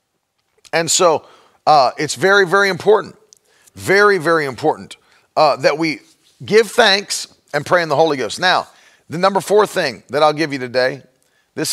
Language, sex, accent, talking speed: English, male, American, 165 wpm